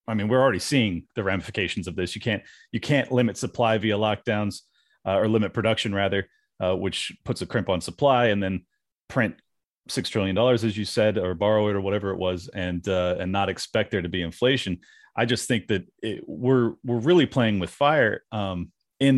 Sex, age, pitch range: male, 30-49, 95-125 Hz